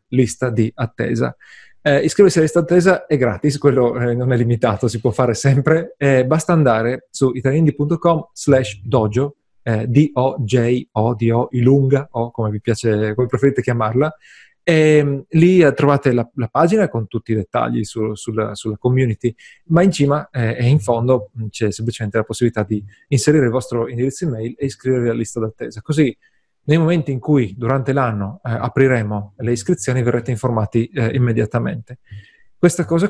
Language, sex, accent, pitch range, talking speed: Italian, male, native, 115-145 Hz, 160 wpm